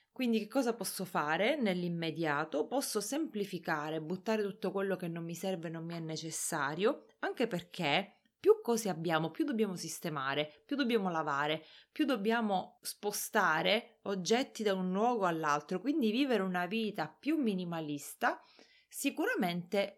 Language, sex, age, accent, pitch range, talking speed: Italian, female, 30-49, native, 170-230 Hz, 135 wpm